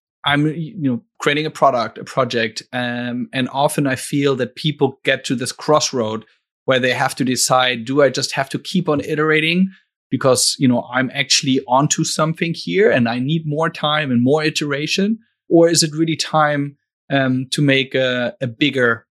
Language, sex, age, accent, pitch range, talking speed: English, male, 30-49, German, 125-150 Hz, 185 wpm